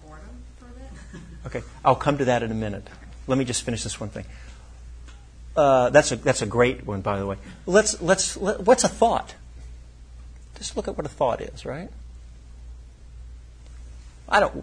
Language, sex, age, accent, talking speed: English, male, 50-69, American, 170 wpm